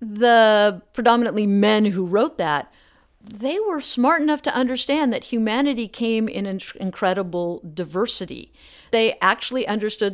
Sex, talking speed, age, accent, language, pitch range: female, 125 wpm, 50-69, American, English, 180-235 Hz